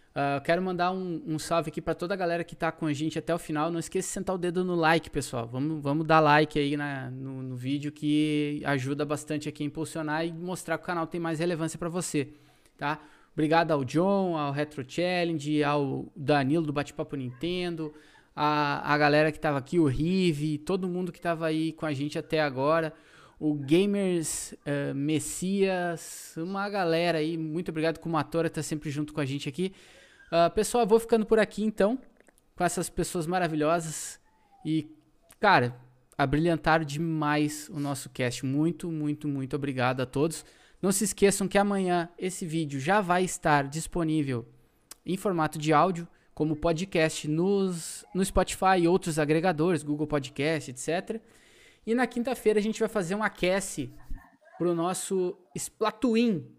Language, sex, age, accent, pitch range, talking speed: Portuguese, male, 20-39, Brazilian, 150-180 Hz, 170 wpm